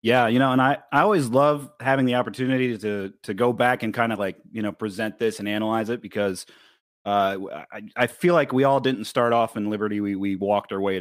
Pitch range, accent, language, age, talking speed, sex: 100-125 Hz, American, English, 30-49, 240 wpm, male